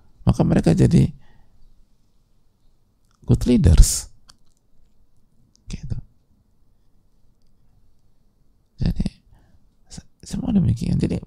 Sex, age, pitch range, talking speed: male, 50-69, 85-110 Hz, 55 wpm